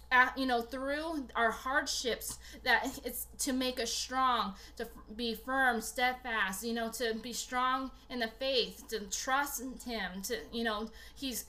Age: 20-39